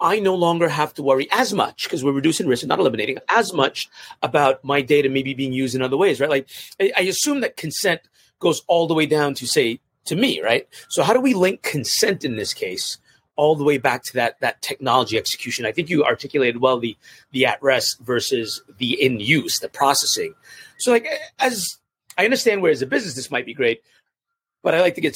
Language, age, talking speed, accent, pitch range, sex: English, 30-49, 215 wpm, American, 145-225 Hz, male